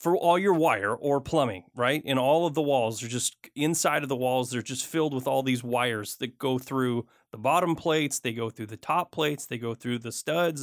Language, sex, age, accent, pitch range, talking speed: English, male, 30-49, American, 130-170 Hz, 235 wpm